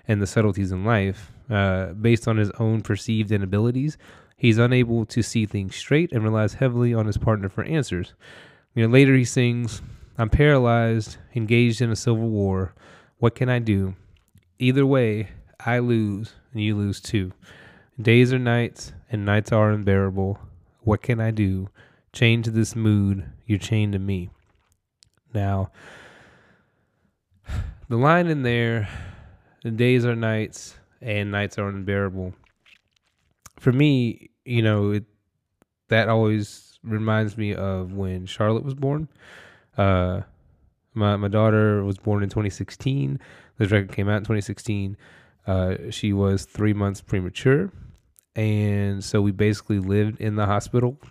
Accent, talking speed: American, 140 wpm